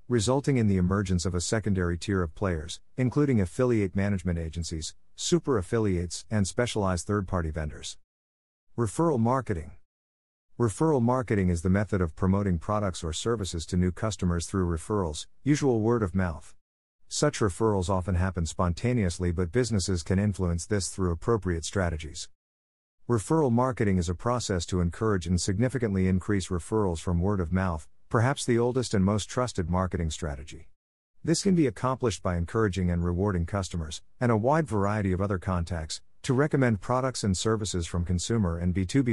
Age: 50-69